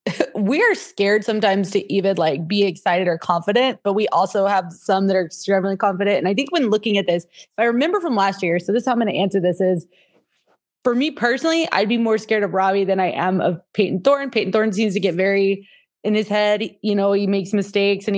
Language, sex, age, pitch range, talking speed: English, female, 20-39, 195-220 Hz, 240 wpm